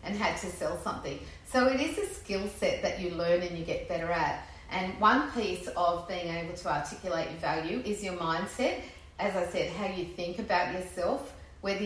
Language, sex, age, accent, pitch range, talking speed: English, female, 40-59, Australian, 170-220 Hz, 205 wpm